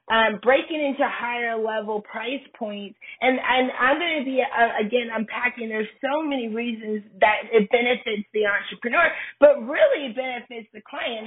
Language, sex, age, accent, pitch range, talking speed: English, female, 30-49, American, 210-250 Hz, 160 wpm